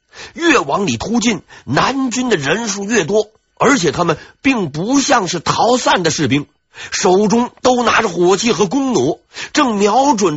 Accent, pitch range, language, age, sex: native, 150-240 Hz, Chinese, 50-69, male